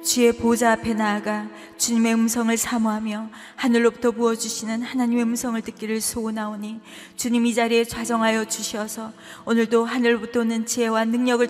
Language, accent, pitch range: Korean, native, 190-230 Hz